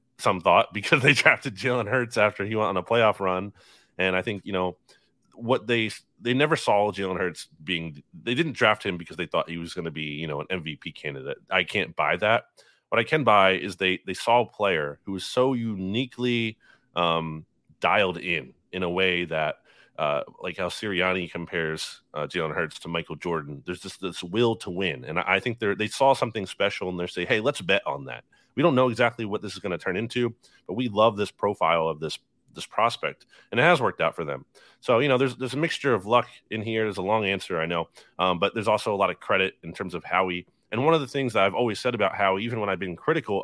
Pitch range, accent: 85-115 Hz, American